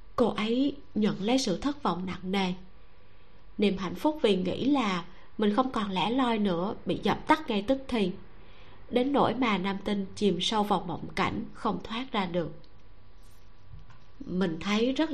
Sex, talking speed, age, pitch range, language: female, 175 wpm, 20-39, 185-235 Hz, Vietnamese